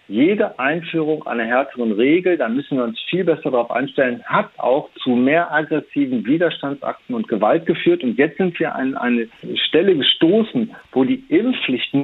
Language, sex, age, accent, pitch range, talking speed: German, male, 50-69, German, 140-205 Hz, 165 wpm